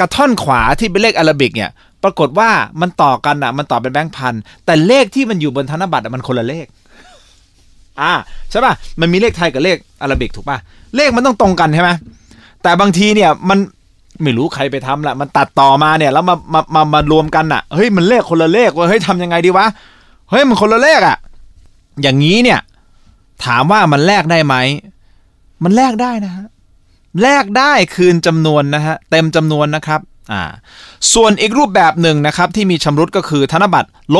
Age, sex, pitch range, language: 20-39, male, 125-195 Hz, Thai